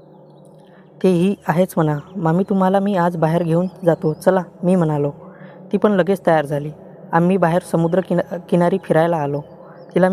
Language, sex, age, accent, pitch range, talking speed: Hindi, female, 20-39, native, 170-185 Hz, 150 wpm